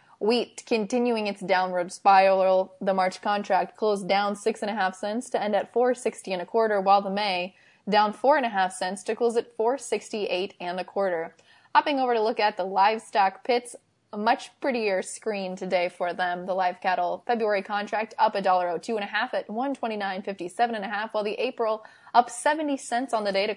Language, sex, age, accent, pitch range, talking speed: English, female, 20-39, American, 190-230 Hz, 185 wpm